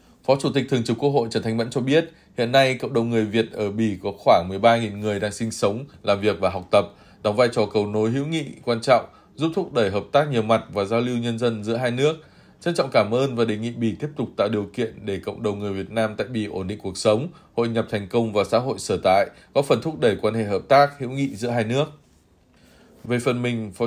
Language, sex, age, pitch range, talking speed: Vietnamese, male, 20-39, 105-125 Hz, 270 wpm